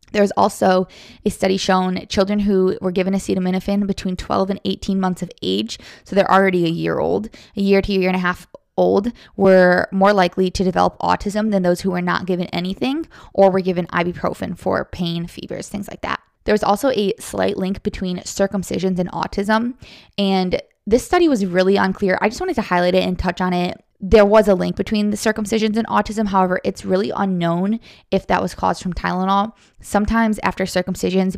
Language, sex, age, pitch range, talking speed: English, female, 20-39, 180-205 Hz, 195 wpm